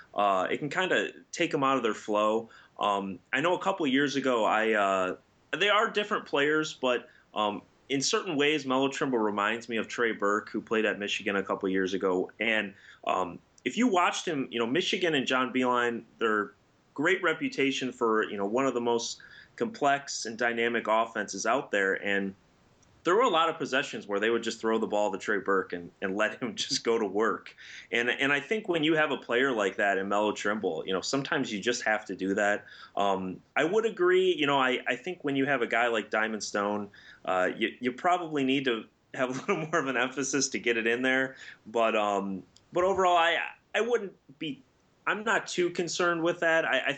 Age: 30-49